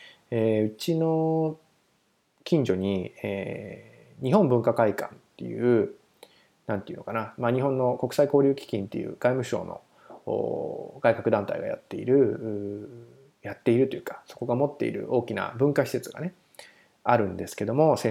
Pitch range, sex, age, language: 105-150 Hz, male, 20-39, Japanese